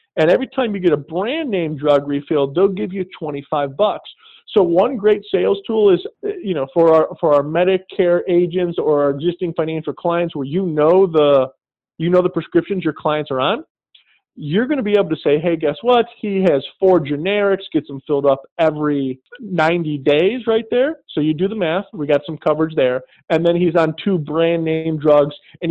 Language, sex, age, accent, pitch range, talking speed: English, male, 40-59, American, 155-205 Hz, 205 wpm